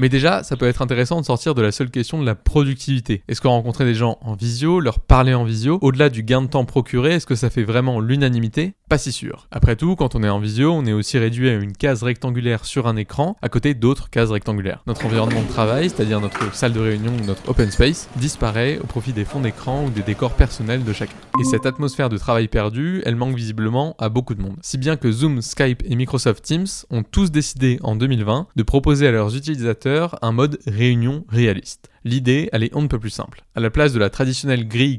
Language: French